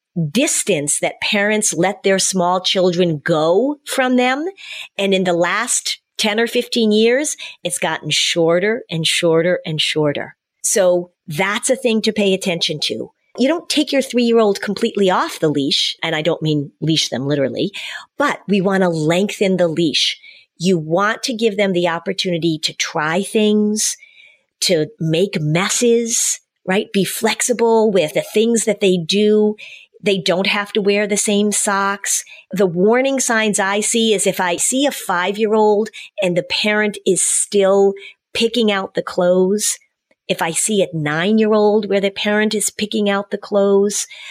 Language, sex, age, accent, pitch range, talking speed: English, female, 40-59, American, 175-220 Hz, 165 wpm